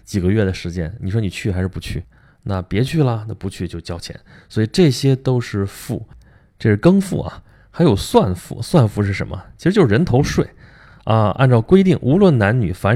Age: 20-39